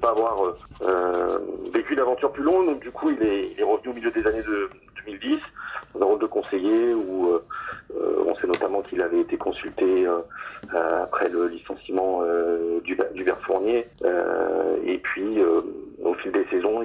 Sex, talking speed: male, 170 wpm